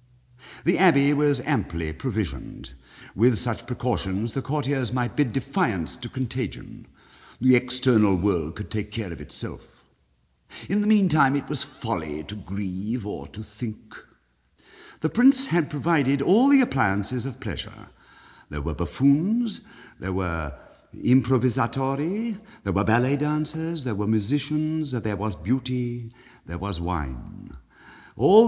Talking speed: 135 wpm